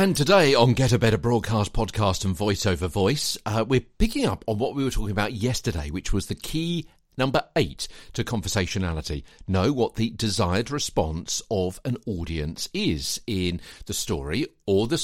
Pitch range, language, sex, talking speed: 90-120 Hz, English, male, 180 wpm